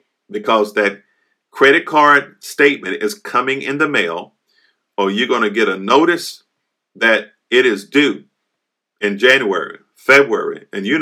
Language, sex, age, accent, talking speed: English, male, 50-69, American, 140 wpm